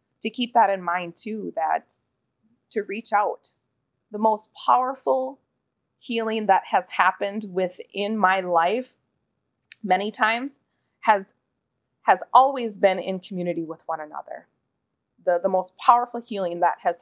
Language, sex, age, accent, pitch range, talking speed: English, female, 30-49, American, 175-225 Hz, 135 wpm